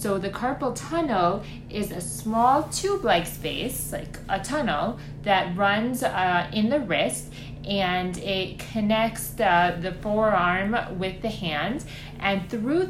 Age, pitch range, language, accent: 30-49, 185-230 Hz, English, American